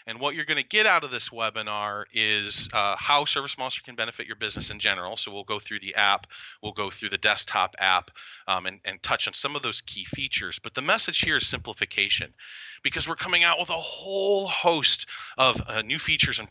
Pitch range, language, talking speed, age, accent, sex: 100-135 Hz, English, 220 wpm, 30-49, American, male